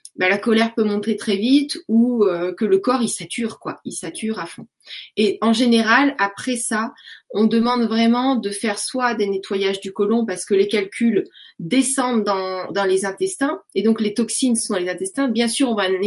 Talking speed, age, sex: 210 wpm, 20-39, female